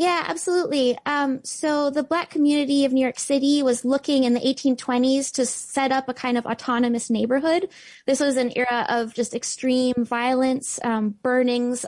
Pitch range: 225-265 Hz